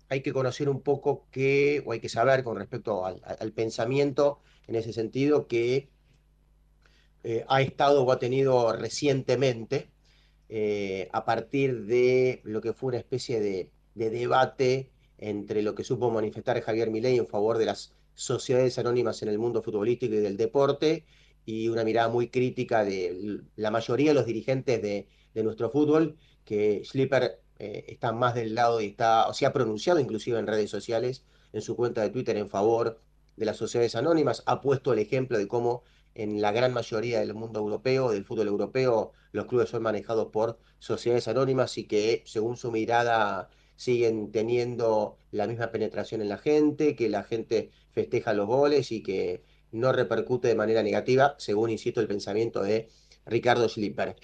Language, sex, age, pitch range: Italian, male, 30-49, 110-135 Hz